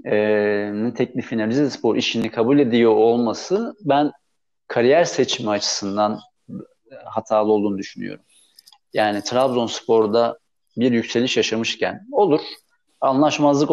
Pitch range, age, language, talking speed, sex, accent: 110-130 Hz, 40-59, Turkish, 90 wpm, male, native